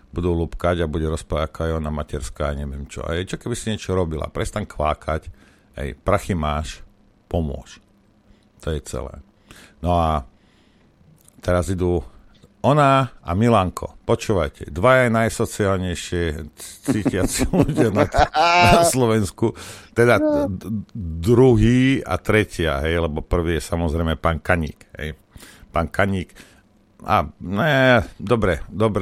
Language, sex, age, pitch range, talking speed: Slovak, male, 60-79, 80-110 Hz, 125 wpm